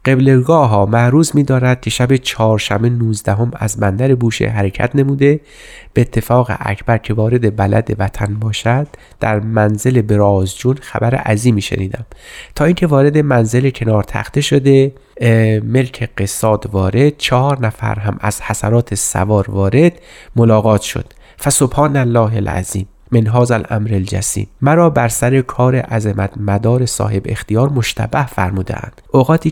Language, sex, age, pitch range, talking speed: Persian, male, 30-49, 105-135 Hz, 130 wpm